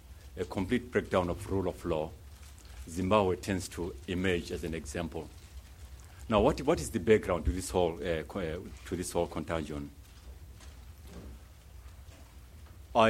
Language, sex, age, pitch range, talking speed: English, male, 50-69, 80-95 Hz, 140 wpm